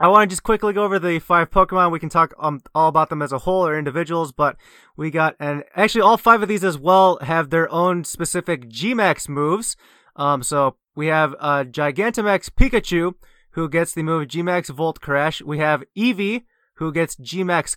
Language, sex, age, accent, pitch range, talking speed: English, male, 20-39, American, 150-190 Hz, 200 wpm